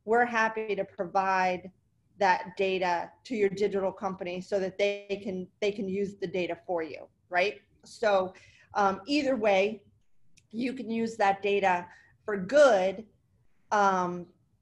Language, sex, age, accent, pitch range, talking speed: English, female, 30-49, American, 190-225 Hz, 140 wpm